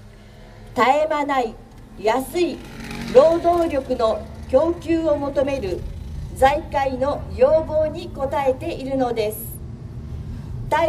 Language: Japanese